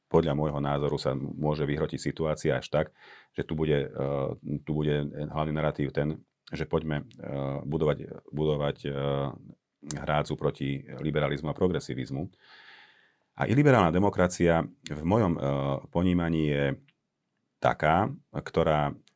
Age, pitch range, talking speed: 40-59, 70-80 Hz, 110 wpm